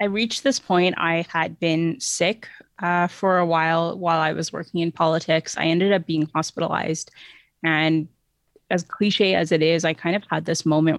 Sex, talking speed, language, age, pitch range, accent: female, 190 wpm, English, 20-39, 155-170 Hz, American